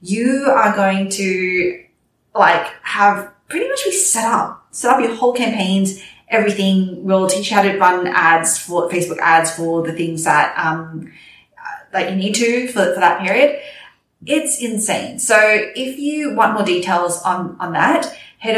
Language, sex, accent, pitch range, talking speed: English, female, Australian, 170-215 Hz, 165 wpm